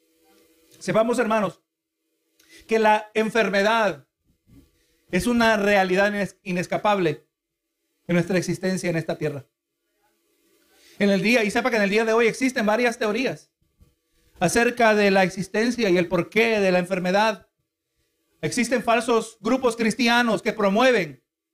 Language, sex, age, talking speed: Spanish, male, 50-69, 125 wpm